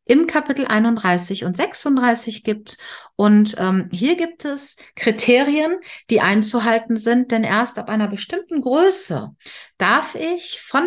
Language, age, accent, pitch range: German, 50-69, German, 195-260 Hz